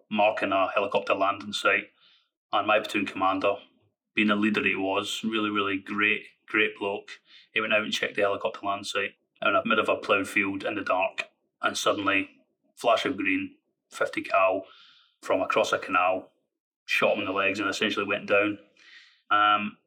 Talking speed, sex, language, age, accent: 180 wpm, male, English, 30-49, British